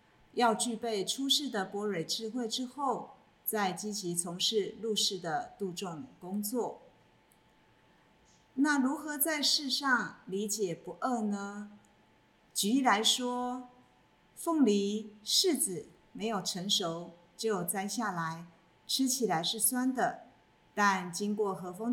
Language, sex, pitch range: Chinese, female, 180-235 Hz